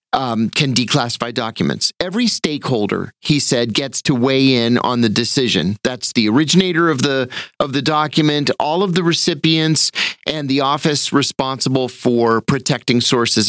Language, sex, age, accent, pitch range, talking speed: English, male, 40-59, American, 125-170 Hz, 150 wpm